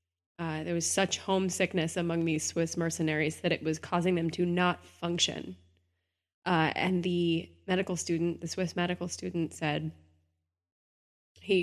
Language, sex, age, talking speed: English, female, 20-39, 145 wpm